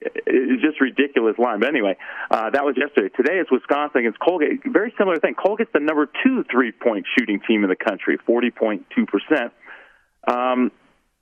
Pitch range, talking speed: 110-165 Hz, 160 wpm